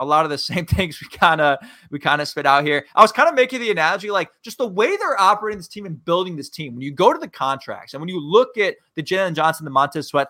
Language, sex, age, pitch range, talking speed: English, male, 20-39, 155-220 Hz, 285 wpm